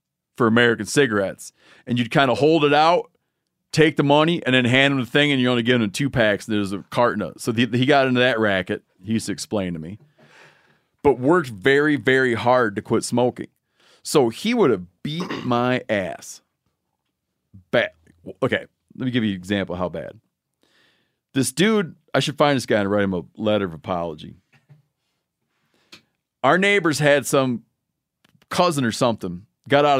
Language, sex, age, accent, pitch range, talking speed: English, male, 40-59, American, 110-145 Hz, 190 wpm